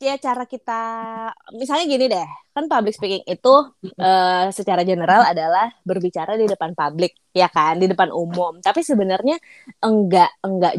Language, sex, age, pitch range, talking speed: Indonesian, female, 20-39, 175-230 Hz, 150 wpm